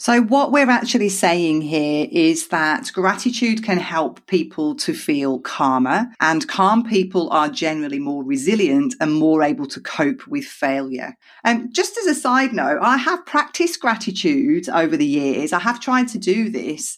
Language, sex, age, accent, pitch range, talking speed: English, female, 40-59, British, 175-260 Hz, 170 wpm